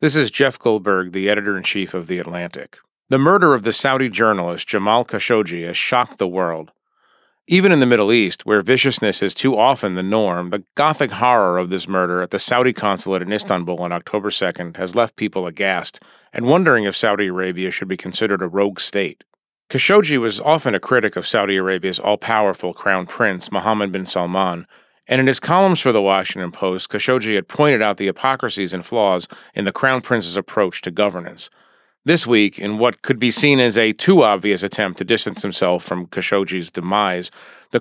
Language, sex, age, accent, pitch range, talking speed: English, male, 40-59, American, 95-125 Hz, 190 wpm